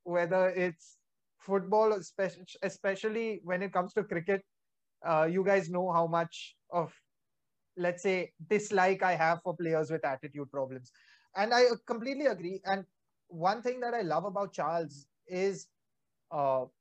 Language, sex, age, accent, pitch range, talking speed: English, male, 20-39, Indian, 170-205 Hz, 145 wpm